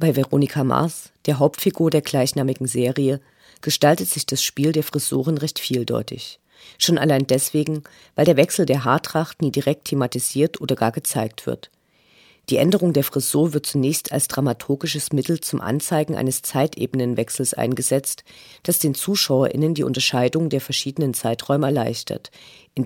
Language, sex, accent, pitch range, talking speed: English, female, German, 130-155 Hz, 145 wpm